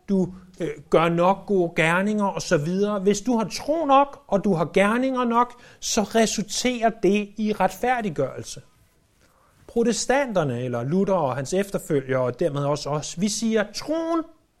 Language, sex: Danish, male